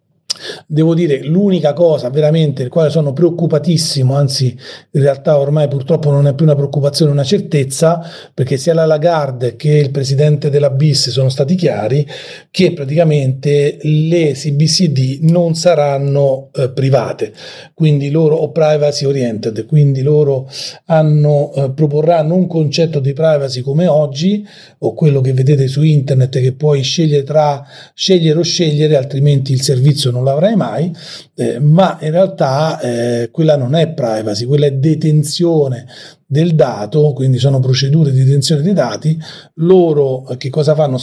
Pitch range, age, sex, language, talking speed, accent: 140-160 Hz, 40-59, male, Italian, 150 wpm, native